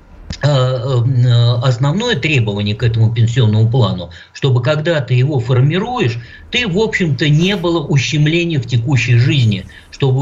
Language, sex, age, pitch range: Russian, male, 50-69, 115-145 Hz